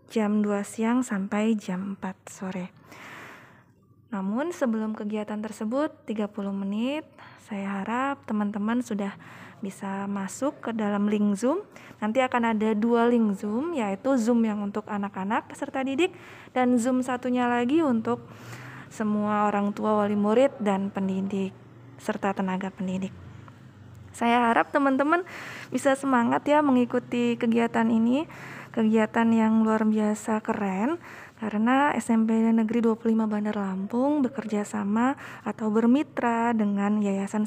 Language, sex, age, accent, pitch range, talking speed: Indonesian, female, 20-39, native, 200-240 Hz, 125 wpm